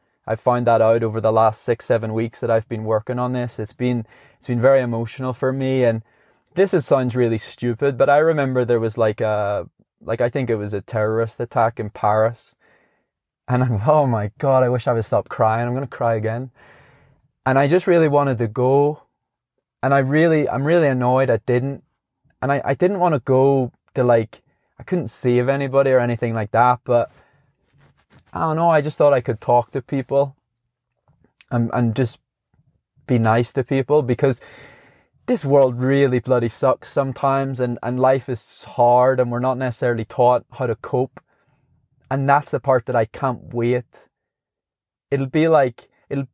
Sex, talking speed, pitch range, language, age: male, 190 wpm, 120-140 Hz, English, 20-39